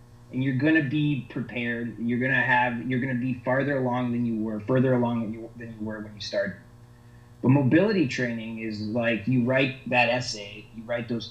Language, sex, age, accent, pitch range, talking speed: English, male, 30-49, American, 115-130 Hz, 200 wpm